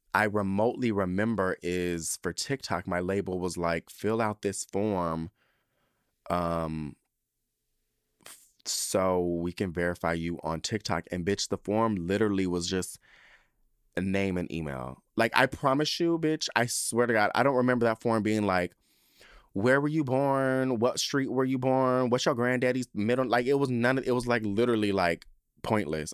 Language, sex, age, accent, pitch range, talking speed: English, male, 20-39, American, 90-125 Hz, 170 wpm